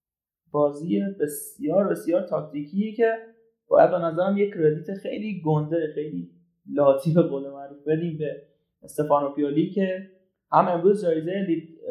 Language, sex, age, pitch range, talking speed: Persian, male, 30-49, 145-180 Hz, 120 wpm